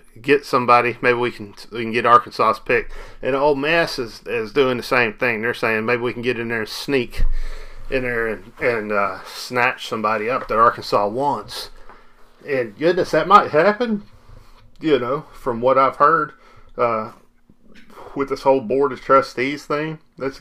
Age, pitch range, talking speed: 40-59, 120-150 Hz, 175 wpm